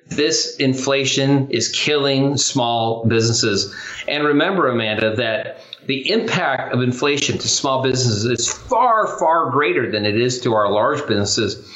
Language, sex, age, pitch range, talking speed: English, male, 40-59, 115-140 Hz, 145 wpm